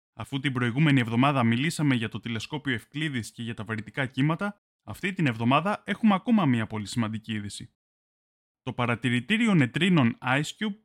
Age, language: 20-39, Greek